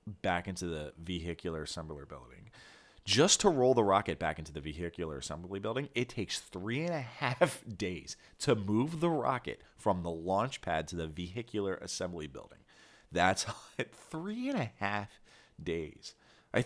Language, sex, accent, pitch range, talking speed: English, male, American, 80-105 Hz, 160 wpm